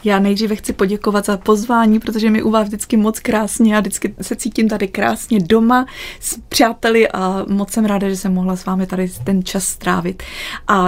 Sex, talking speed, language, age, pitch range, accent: female, 200 wpm, Czech, 20-39, 185-210 Hz, native